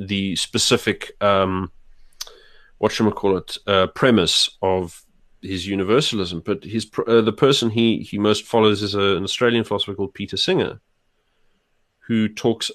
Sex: male